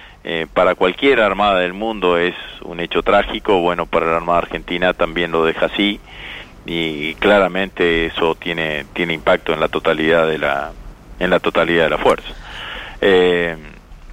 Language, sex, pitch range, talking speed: Spanish, male, 85-95 Hz, 155 wpm